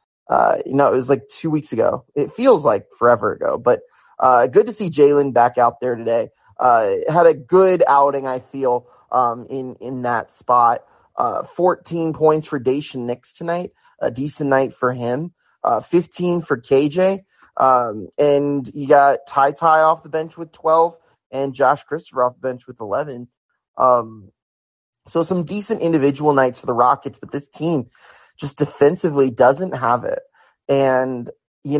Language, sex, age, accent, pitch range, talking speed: English, male, 20-39, American, 130-175 Hz, 170 wpm